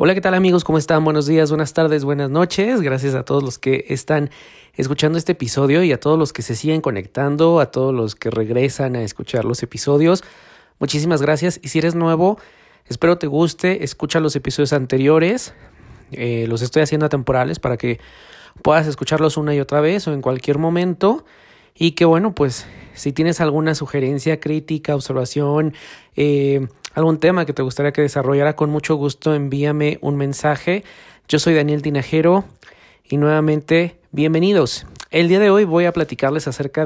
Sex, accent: male, Mexican